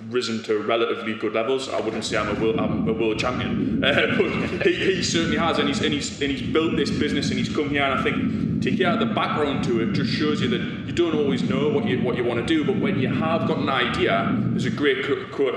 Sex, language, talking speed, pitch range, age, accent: male, English, 245 wpm, 115-165 Hz, 20-39, British